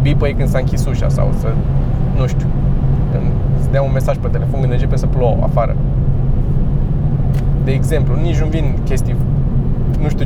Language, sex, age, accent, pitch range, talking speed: Romanian, male, 20-39, native, 130-140 Hz, 165 wpm